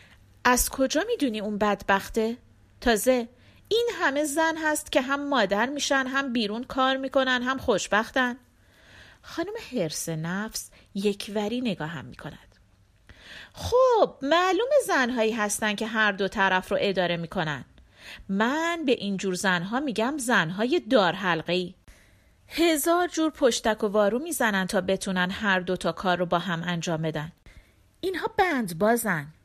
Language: Persian